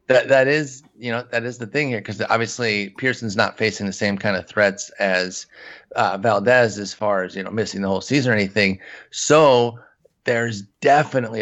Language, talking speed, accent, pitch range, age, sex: English, 195 wpm, American, 105-130 Hz, 30-49, male